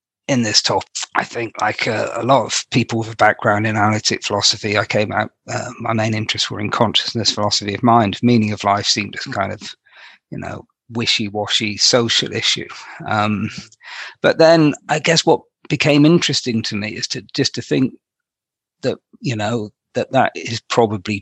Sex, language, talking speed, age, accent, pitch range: male, English, 180 wpm, 40-59, British, 115-140 Hz